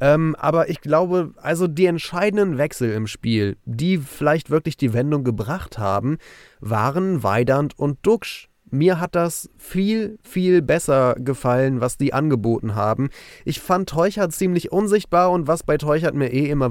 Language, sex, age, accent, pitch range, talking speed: German, male, 30-49, German, 125-160 Hz, 155 wpm